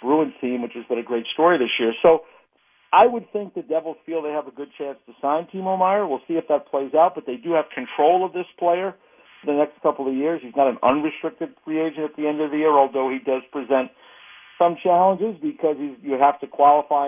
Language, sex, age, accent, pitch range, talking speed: English, male, 50-69, American, 140-180 Hz, 240 wpm